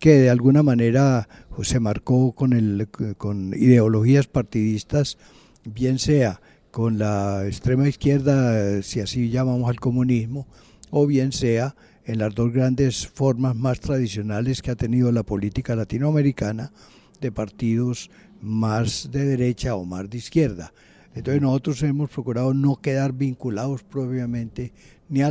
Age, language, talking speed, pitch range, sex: 60-79, Spanish, 135 wpm, 110-135 Hz, male